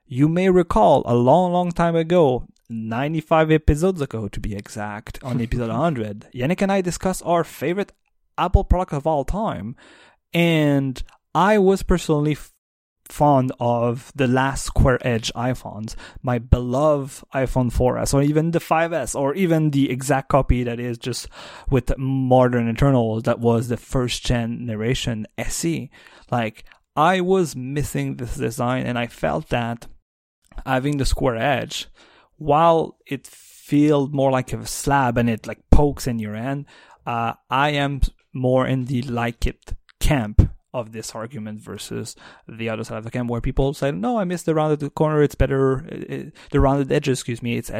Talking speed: 160 wpm